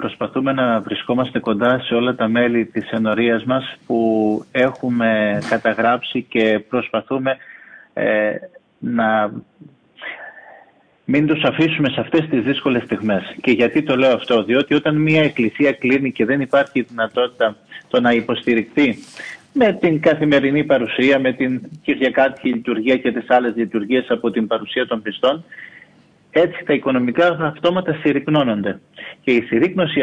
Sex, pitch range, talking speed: male, 120-155 Hz, 135 wpm